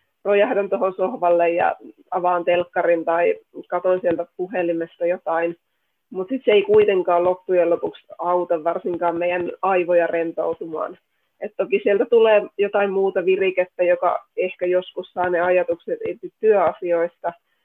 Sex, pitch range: female, 170-190 Hz